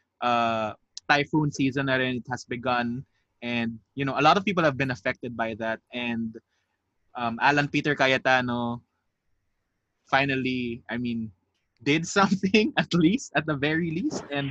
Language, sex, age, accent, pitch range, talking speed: English, male, 20-39, Filipino, 120-150 Hz, 150 wpm